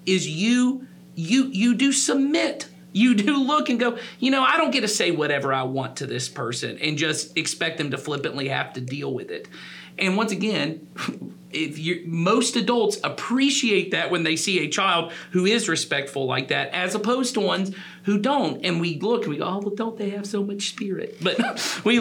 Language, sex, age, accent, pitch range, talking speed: English, male, 40-59, American, 155-230 Hz, 205 wpm